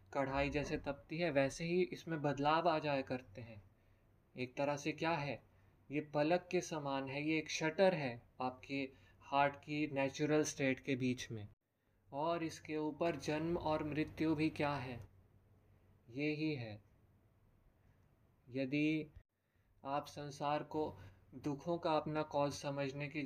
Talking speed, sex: 145 wpm, male